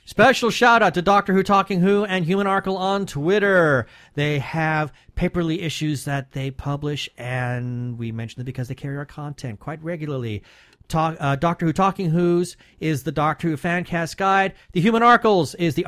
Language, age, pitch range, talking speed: English, 40-59, 140-195 Hz, 180 wpm